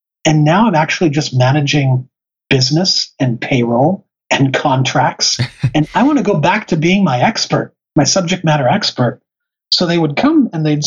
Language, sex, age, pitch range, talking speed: English, male, 40-59, 125-150 Hz, 170 wpm